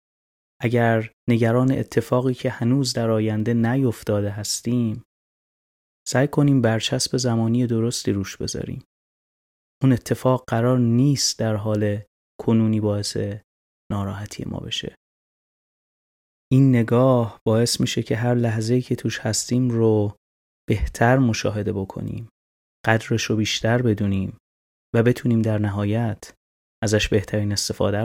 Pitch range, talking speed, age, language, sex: 100-120 Hz, 110 wpm, 30-49, Persian, male